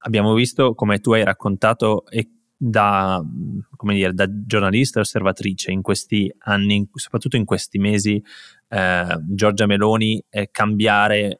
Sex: male